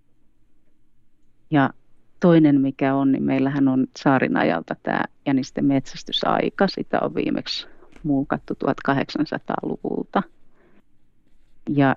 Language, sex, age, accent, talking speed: Finnish, female, 30-49, native, 90 wpm